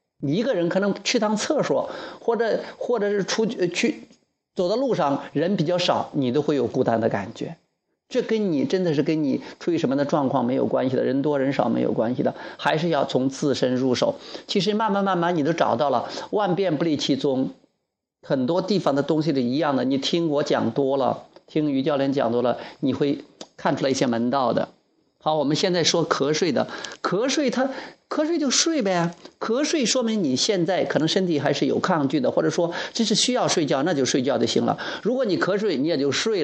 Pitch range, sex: 140-210 Hz, male